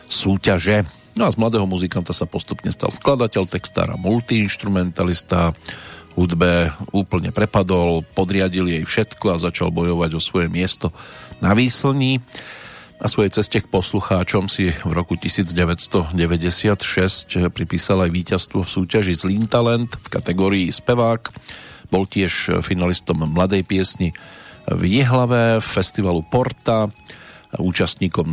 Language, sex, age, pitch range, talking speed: Slovak, male, 40-59, 85-105 Hz, 120 wpm